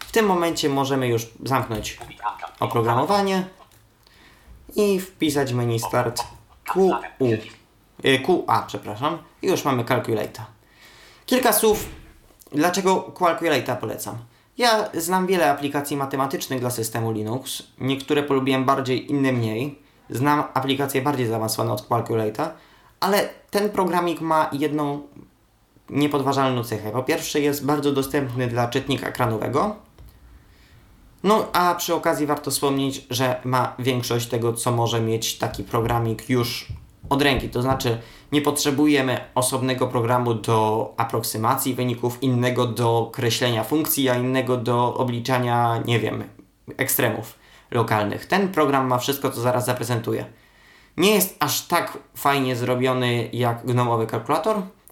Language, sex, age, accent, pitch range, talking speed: Polish, male, 20-39, native, 120-150 Hz, 120 wpm